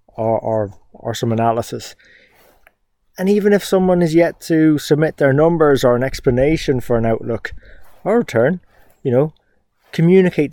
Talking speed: 150 wpm